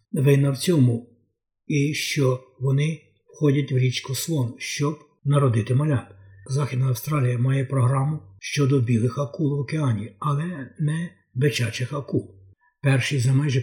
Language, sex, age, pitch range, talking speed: Ukrainian, male, 50-69, 125-145 Hz, 130 wpm